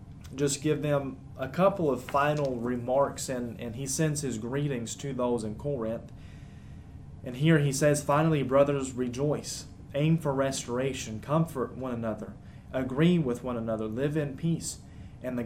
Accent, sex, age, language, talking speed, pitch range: American, male, 30-49, English, 155 wpm, 120-140 Hz